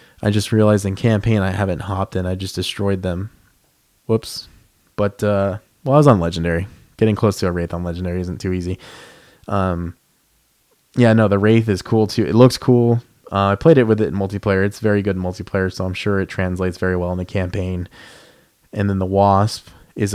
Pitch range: 95-110 Hz